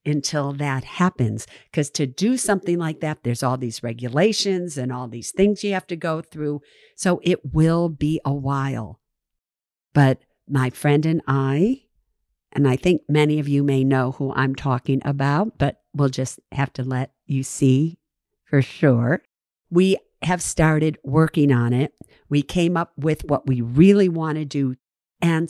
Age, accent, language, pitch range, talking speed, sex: 50-69, American, English, 130-170 Hz, 170 wpm, female